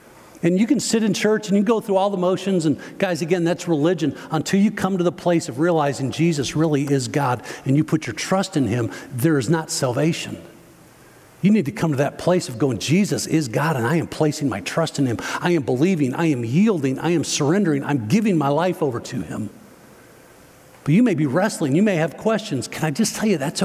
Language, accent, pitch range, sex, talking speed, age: English, American, 145-180 Hz, male, 235 wpm, 50-69